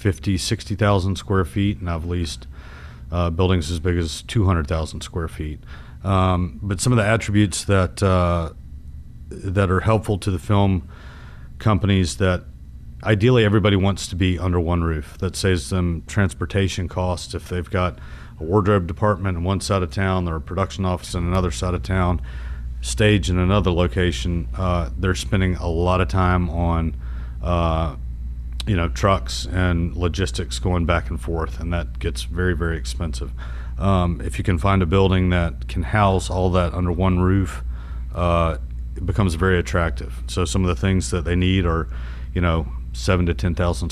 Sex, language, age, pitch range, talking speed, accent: male, English, 40-59, 75-95 Hz, 170 wpm, American